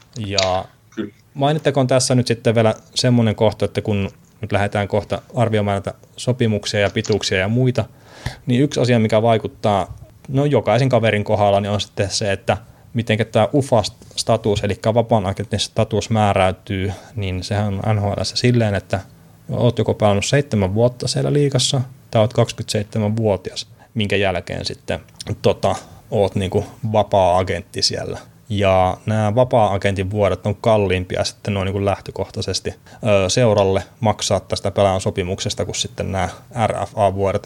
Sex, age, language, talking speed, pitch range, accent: male, 20-39, Finnish, 135 wpm, 100-120 Hz, native